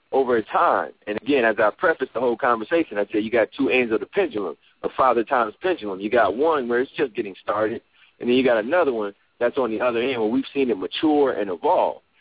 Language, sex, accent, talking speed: English, male, American, 235 wpm